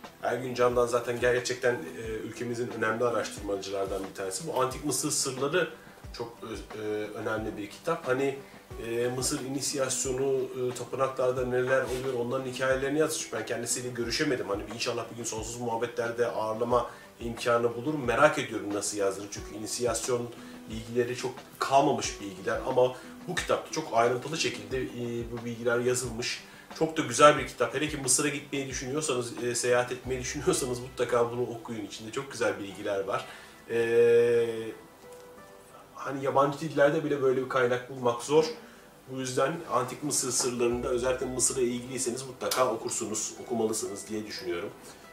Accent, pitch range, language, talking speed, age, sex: native, 120-130 Hz, Turkish, 135 wpm, 40-59, male